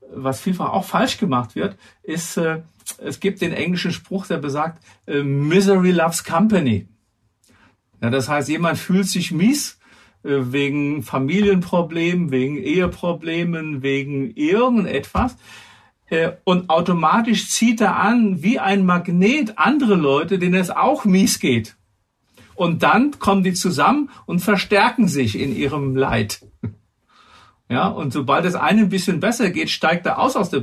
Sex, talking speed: male, 135 wpm